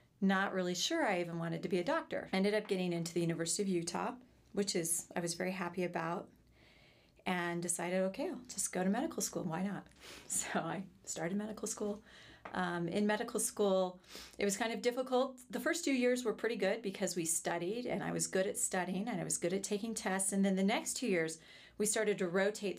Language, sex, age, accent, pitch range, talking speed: English, female, 40-59, American, 170-210 Hz, 220 wpm